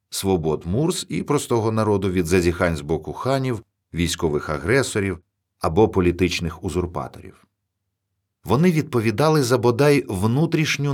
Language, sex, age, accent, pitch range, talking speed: Ukrainian, male, 50-69, native, 85-115 Hz, 110 wpm